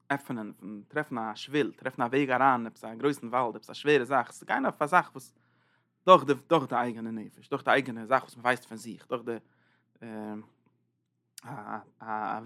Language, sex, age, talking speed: English, male, 20-39, 195 wpm